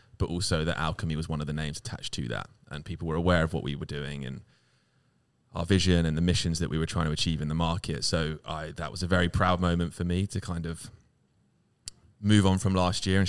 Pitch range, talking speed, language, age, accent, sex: 80-95 Hz, 250 wpm, English, 20-39, British, male